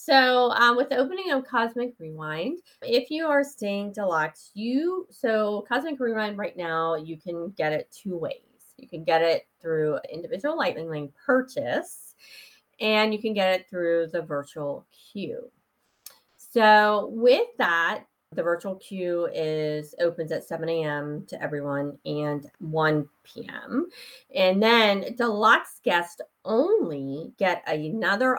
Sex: female